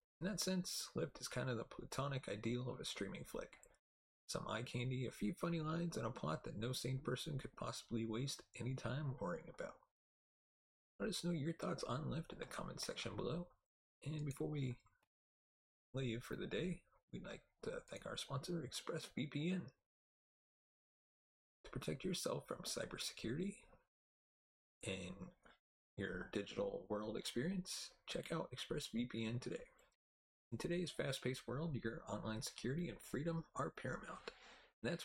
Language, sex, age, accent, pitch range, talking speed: English, male, 30-49, American, 120-170 Hz, 150 wpm